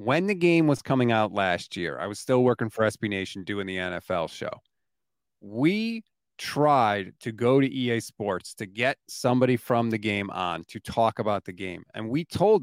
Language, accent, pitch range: English, American, 115-175 Hz